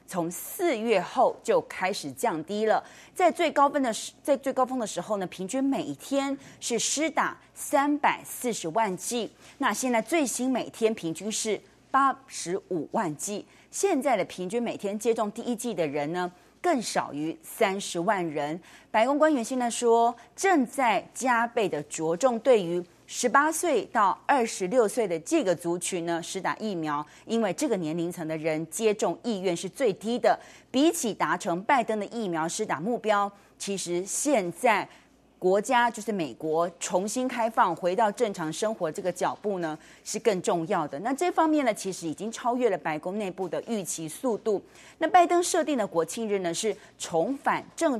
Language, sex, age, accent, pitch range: Chinese, female, 30-49, native, 175-255 Hz